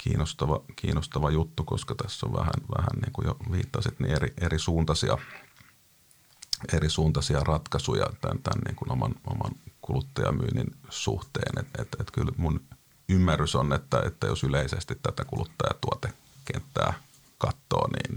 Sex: male